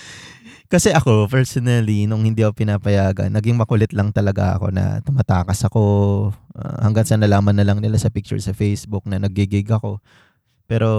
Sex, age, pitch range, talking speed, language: male, 20-39, 100-120 Hz, 165 wpm, Filipino